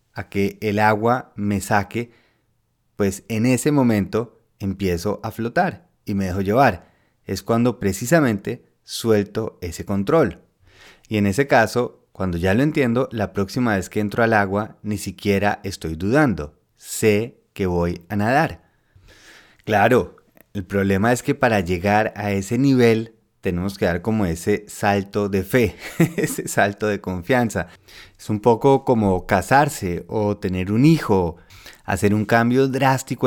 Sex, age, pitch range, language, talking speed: male, 30-49, 100-120 Hz, Spanish, 150 wpm